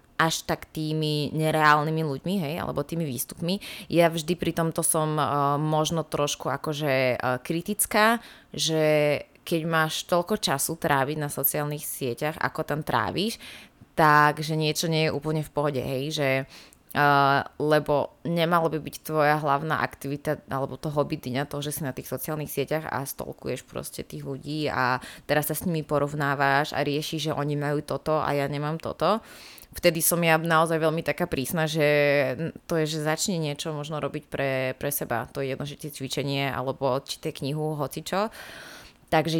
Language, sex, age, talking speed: Slovak, female, 20-39, 165 wpm